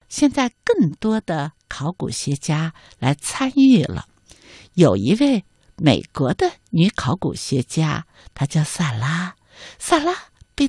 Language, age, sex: Chinese, 60-79, female